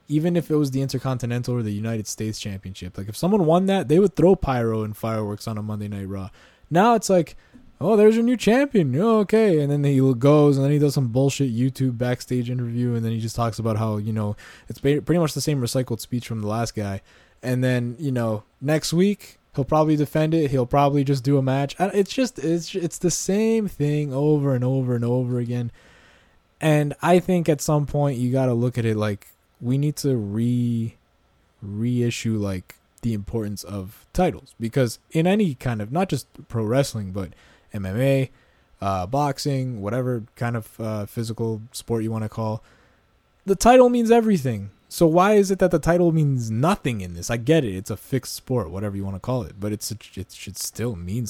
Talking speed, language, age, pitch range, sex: 210 wpm, English, 20-39, 110-150 Hz, male